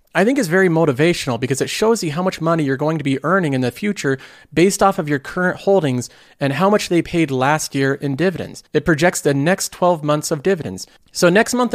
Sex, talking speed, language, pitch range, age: male, 235 wpm, English, 140-185 Hz, 40-59